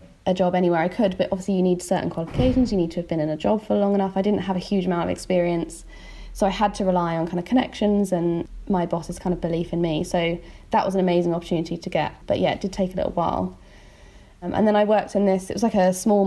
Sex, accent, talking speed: female, British, 275 wpm